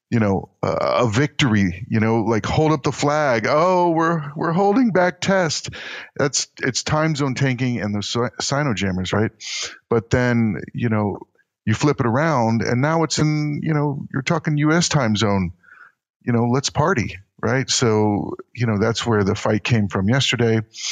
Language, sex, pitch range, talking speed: English, male, 105-140 Hz, 175 wpm